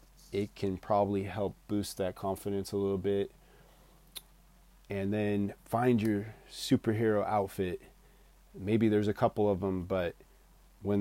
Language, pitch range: English, 100-125 Hz